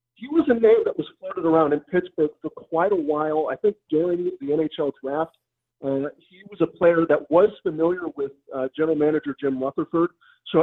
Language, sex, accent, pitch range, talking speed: English, male, American, 140-175 Hz, 200 wpm